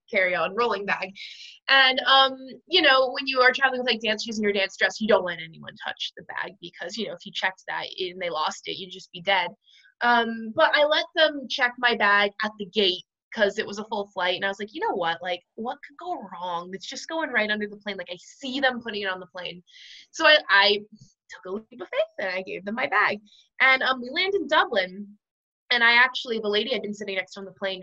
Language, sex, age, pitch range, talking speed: English, female, 20-39, 195-255 Hz, 255 wpm